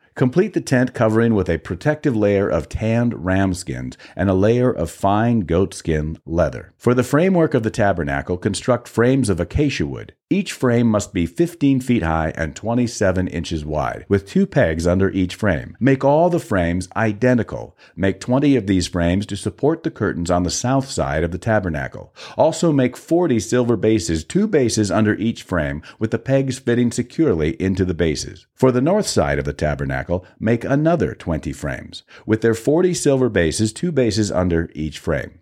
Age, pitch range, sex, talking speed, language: 50-69, 85-125 Hz, male, 185 wpm, English